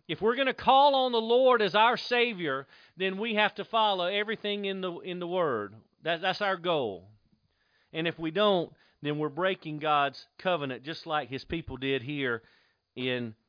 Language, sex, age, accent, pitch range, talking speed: English, male, 40-59, American, 155-215 Hz, 185 wpm